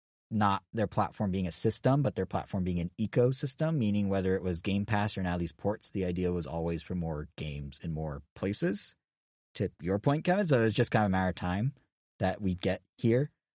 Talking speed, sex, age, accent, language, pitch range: 215 wpm, male, 30-49, American, English, 90-130 Hz